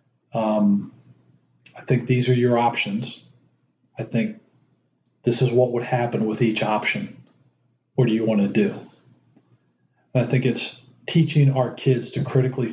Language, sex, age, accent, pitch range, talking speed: English, male, 40-59, American, 115-135 Hz, 145 wpm